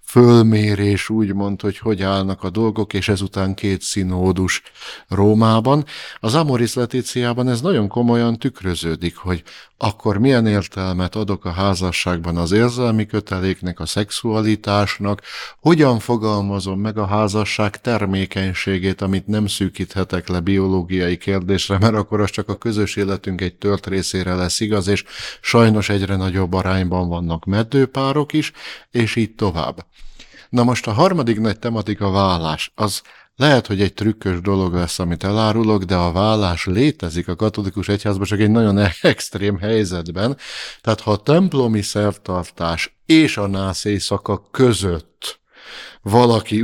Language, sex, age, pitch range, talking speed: Hungarian, male, 50-69, 95-115 Hz, 135 wpm